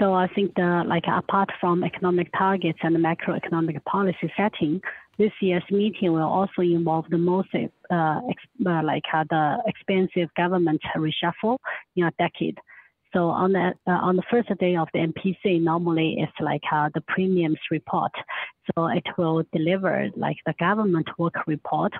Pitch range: 165-195 Hz